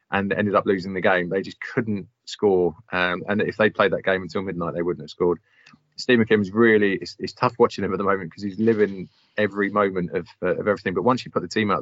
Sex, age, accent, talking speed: male, 20-39, British, 255 wpm